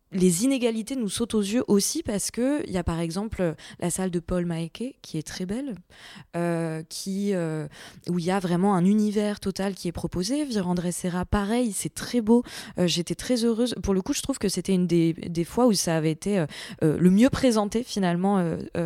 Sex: female